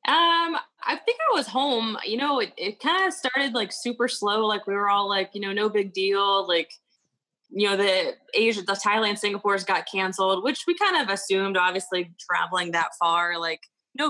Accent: American